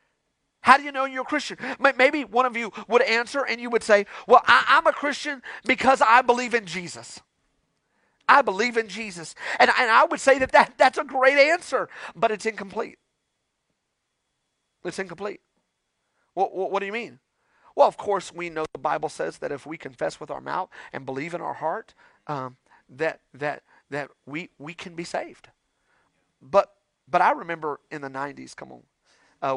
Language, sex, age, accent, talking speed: English, male, 40-59, American, 185 wpm